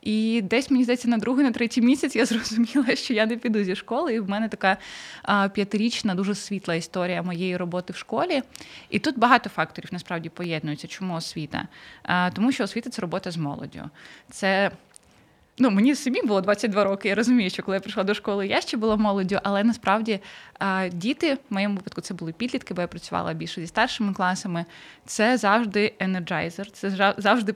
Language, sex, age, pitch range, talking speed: Ukrainian, female, 20-39, 180-220 Hz, 185 wpm